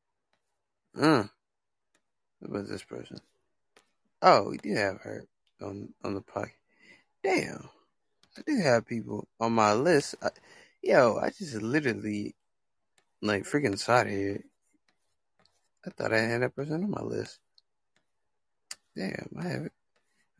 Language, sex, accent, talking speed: English, male, American, 120 wpm